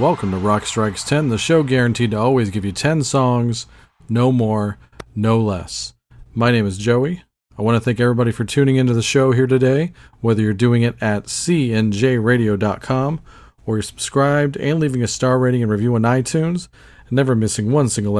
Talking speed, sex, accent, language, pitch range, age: 190 wpm, male, American, English, 105-125 Hz, 40-59